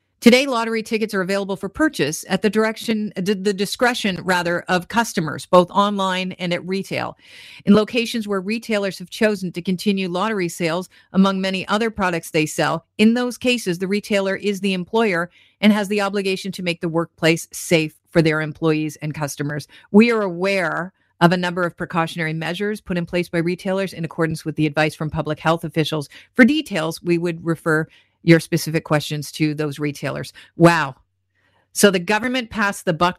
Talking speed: 180 wpm